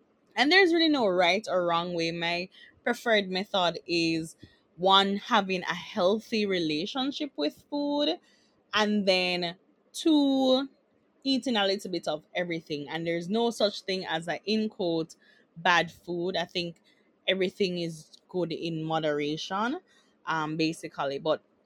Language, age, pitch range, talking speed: English, 20-39, 165-210 Hz, 135 wpm